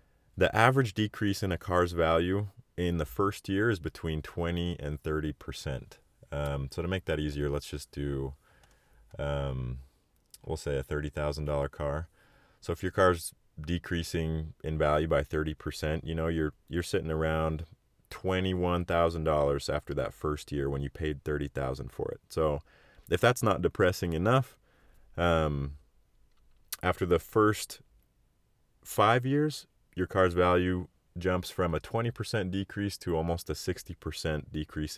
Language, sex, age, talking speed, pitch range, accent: English, male, 30-49, 160 wpm, 75-95 Hz, American